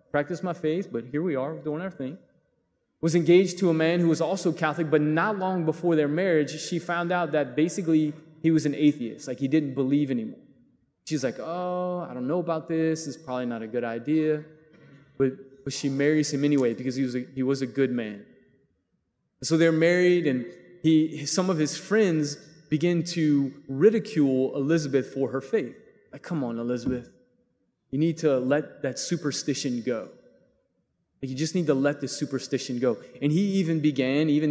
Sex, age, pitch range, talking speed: male, 20-39, 135-165 Hz, 190 wpm